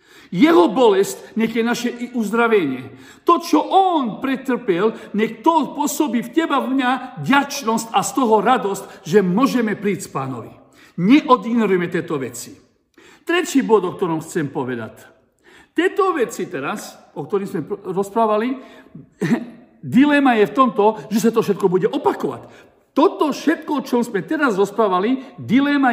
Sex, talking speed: male, 140 wpm